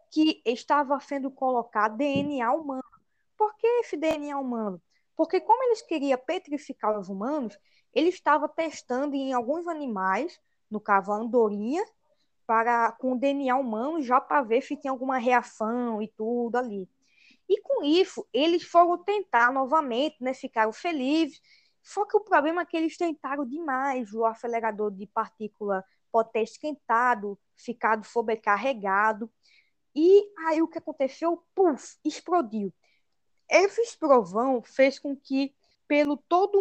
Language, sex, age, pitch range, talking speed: Portuguese, female, 20-39, 230-310 Hz, 140 wpm